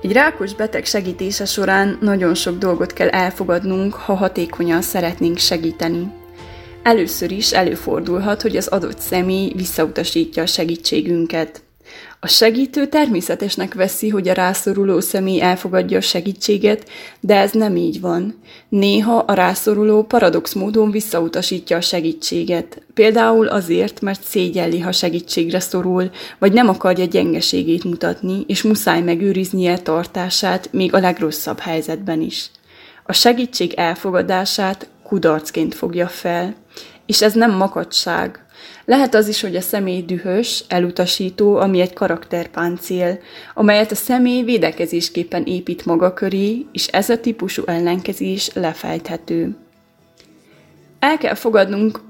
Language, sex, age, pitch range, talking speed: Hungarian, female, 20-39, 175-205 Hz, 120 wpm